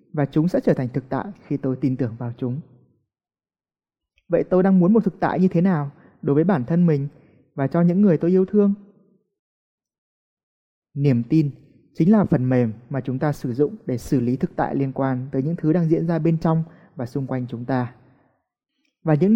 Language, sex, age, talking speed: Vietnamese, male, 20-39, 210 wpm